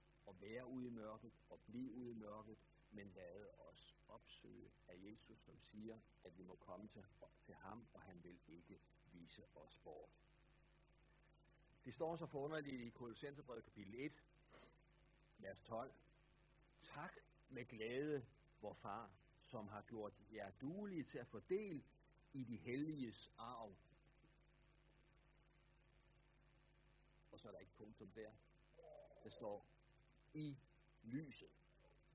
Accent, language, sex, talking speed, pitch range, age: native, Danish, male, 135 wpm, 115-160 Hz, 60-79